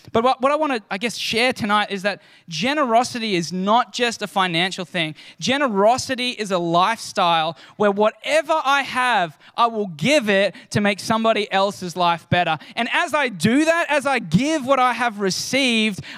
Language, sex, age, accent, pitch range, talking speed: English, male, 20-39, Australian, 175-245 Hz, 180 wpm